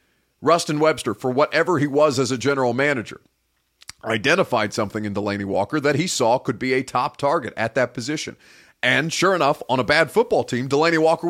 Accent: American